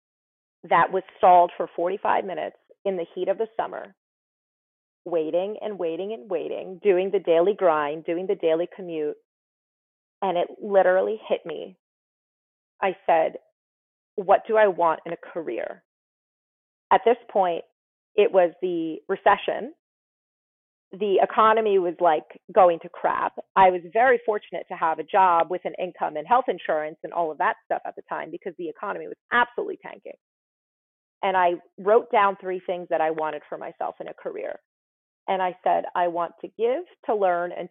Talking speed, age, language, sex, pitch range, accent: 165 wpm, 30-49, English, female, 170-220 Hz, American